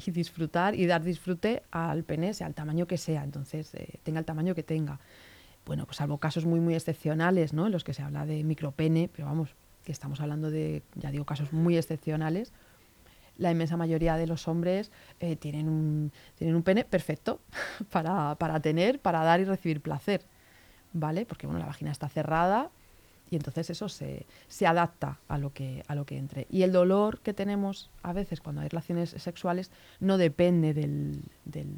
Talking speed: 190 wpm